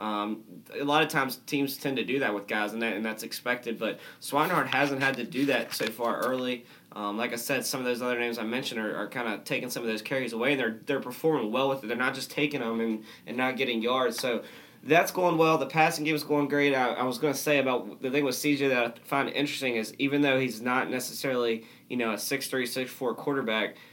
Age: 20-39